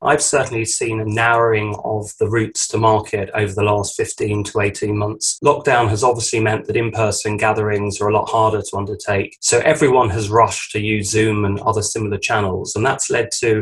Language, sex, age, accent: English, male, 20-39, British